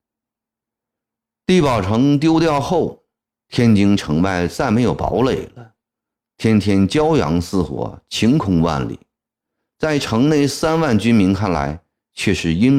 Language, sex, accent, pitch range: Chinese, male, native, 85-125 Hz